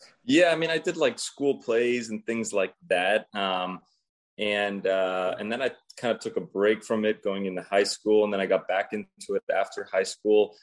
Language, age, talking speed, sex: English, 20-39, 220 wpm, male